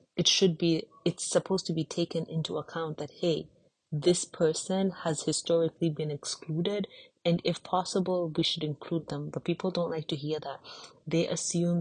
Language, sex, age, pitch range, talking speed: English, female, 30-49, 155-170 Hz, 175 wpm